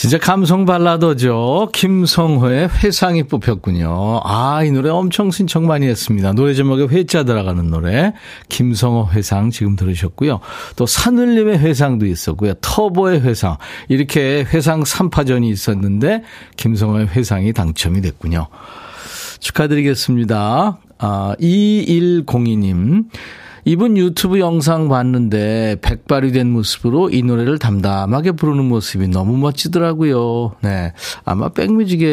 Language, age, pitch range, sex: Korean, 40-59, 105-155 Hz, male